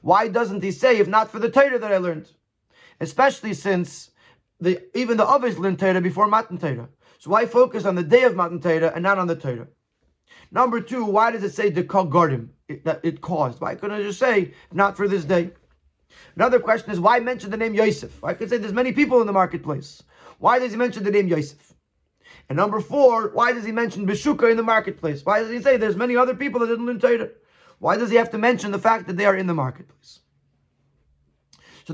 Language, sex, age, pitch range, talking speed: English, male, 30-49, 165-230 Hz, 225 wpm